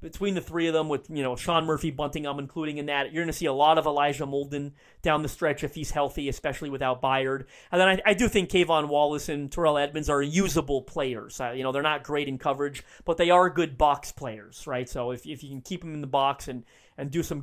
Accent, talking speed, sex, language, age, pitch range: American, 260 wpm, male, English, 30-49, 130-155 Hz